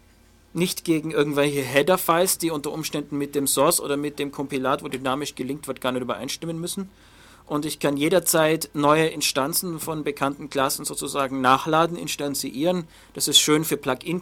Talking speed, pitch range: 165 wpm, 135-155 Hz